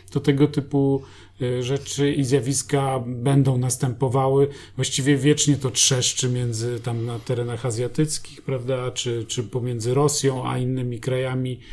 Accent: native